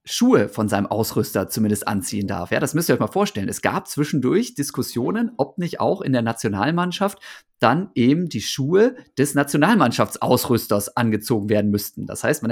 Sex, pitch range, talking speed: male, 120-155 Hz, 175 wpm